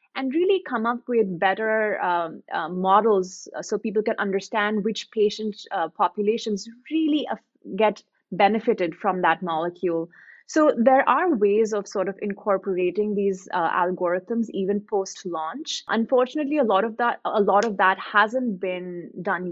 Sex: female